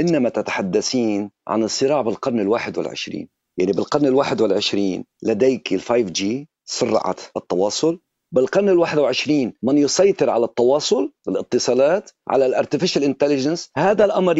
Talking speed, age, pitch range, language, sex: 115 wpm, 50-69, 125-160 Hz, Arabic, male